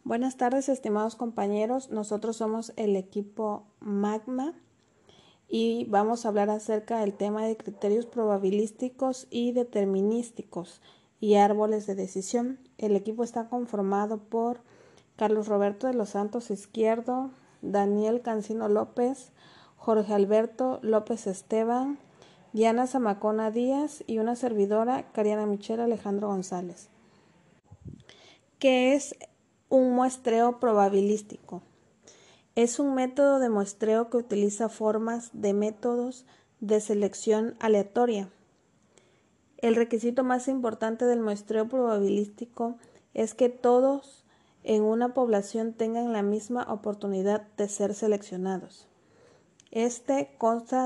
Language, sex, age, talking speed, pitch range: Spanish, female, 40-59, 110 wpm, 210-240 Hz